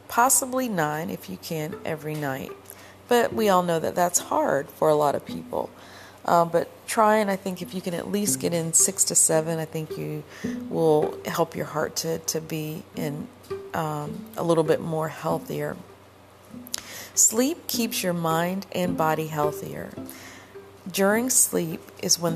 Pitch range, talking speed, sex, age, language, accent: 150-195 Hz, 170 wpm, female, 40-59, English, American